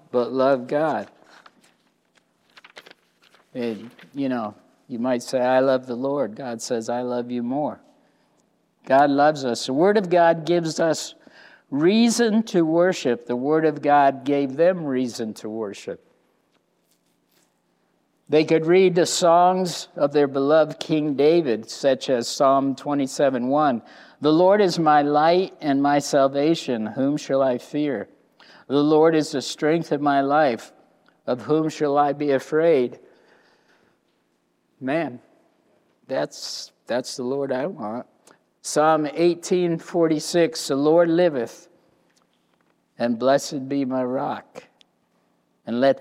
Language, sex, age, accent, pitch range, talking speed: English, male, 60-79, American, 125-160 Hz, 130 wpm